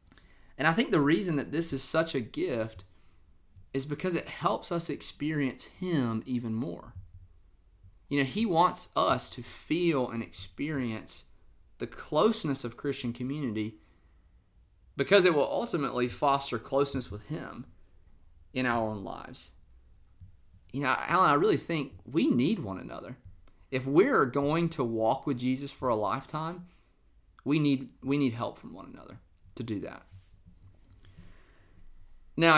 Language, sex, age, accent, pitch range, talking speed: English, male, 30-49, American, 95-145 Hz, 140 wpm